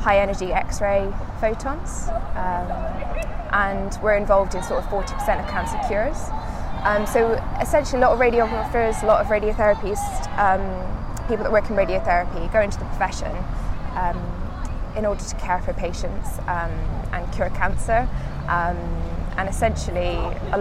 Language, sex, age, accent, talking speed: English, female, 20-39, British, 150 wpm